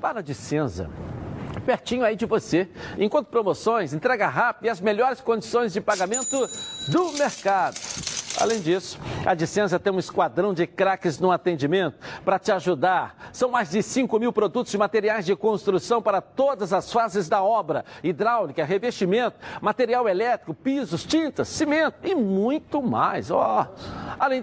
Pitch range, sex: 175-245 Hz, male